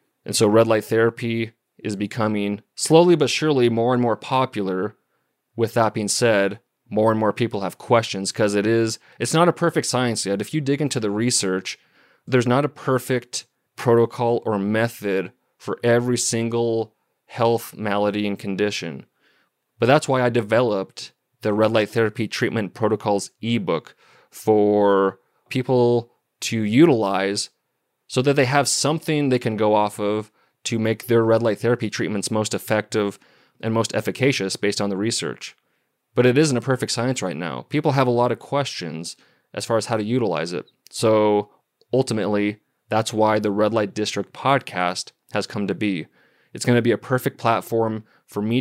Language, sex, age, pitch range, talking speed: English, male, 30-49, 105-125 Hz, 170 wpm